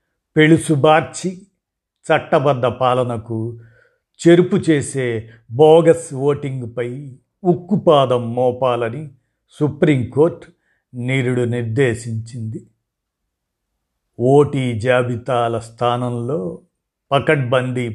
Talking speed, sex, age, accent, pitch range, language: 55 wpm, male, 50-69, native, 120-145 Hz, Telugu